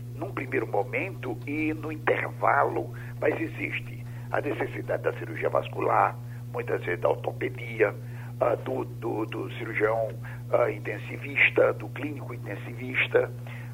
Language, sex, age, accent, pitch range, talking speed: Portuguese, male, 60-79, Brazilian, 120-125 Hz, 110 wpm